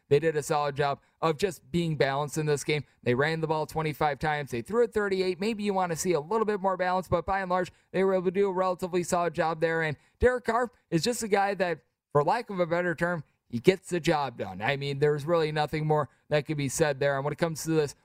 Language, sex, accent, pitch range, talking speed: English, male, American, 145-175 Hz, 275 wpm